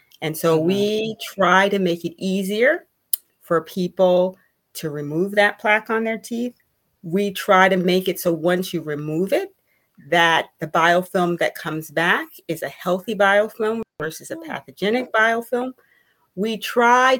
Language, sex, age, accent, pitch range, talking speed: English, female, 40-59, American, 165-210 Hz, 150 wpm